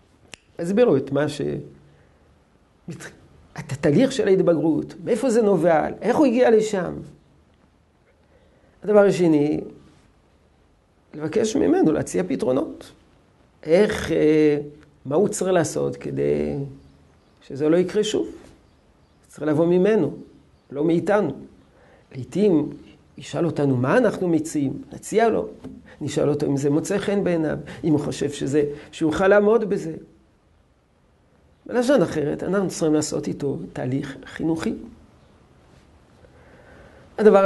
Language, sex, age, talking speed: Hebrew, male, 50-69, 110 wpm